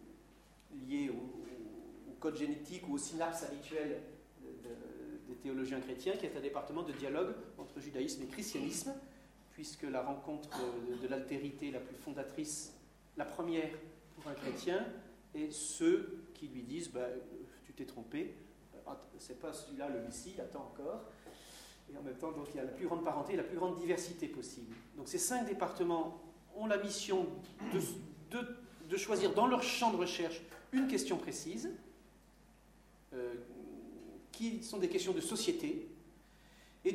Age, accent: 40-59, French